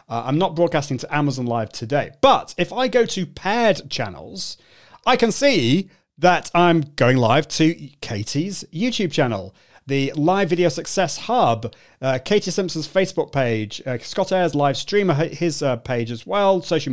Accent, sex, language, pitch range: British, male, English, 120-170 Hz